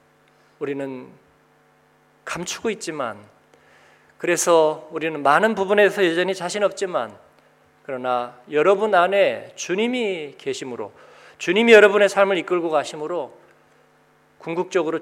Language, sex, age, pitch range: Korean, male, 40-59, 145-195 Hz